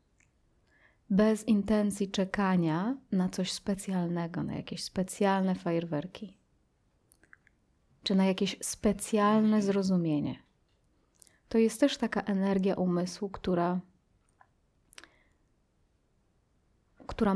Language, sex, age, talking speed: Polish, female, 30-49, 80 wpm